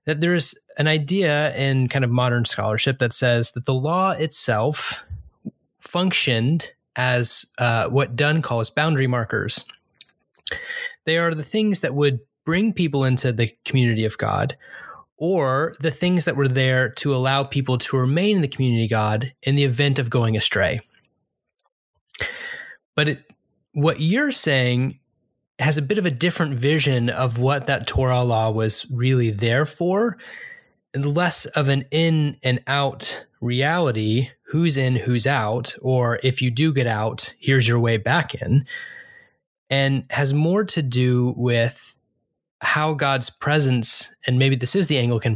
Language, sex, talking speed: English, male, 155 wpm